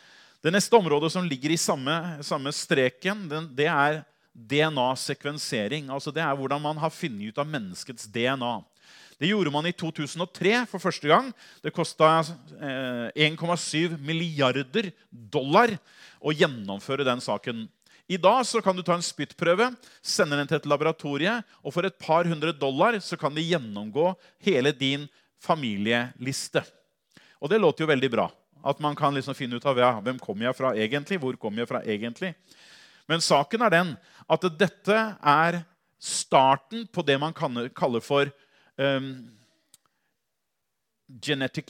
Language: English